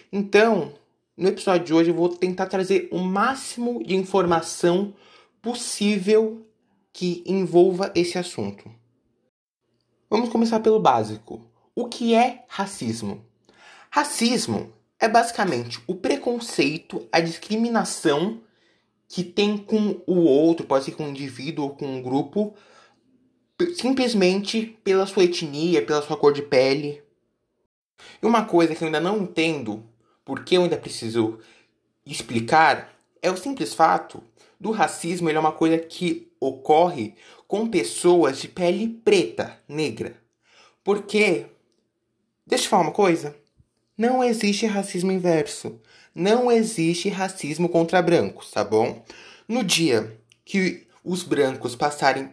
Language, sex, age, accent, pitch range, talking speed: Portuguese, male, 20-39, Brazilian, 145-210 Hz, 125 wpm